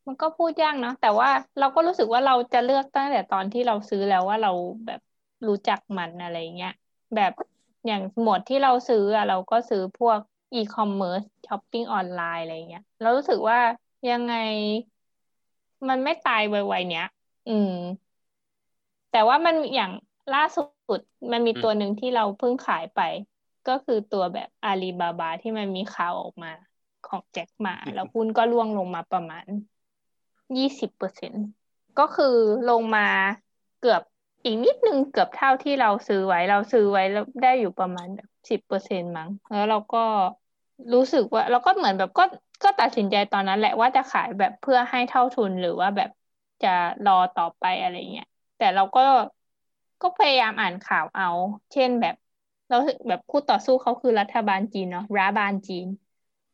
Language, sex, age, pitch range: English, female, 20-39, 195-250 Hz